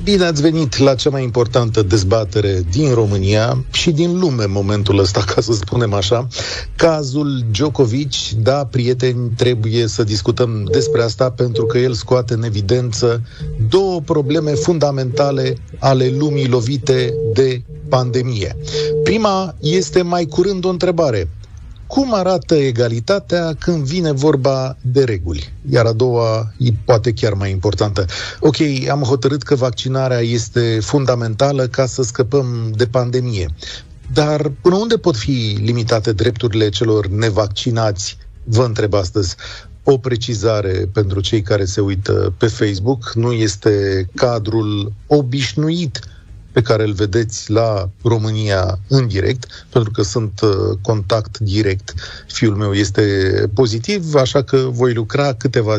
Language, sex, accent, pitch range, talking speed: Romanian, male, native, 105-135 Hz, 130 wpm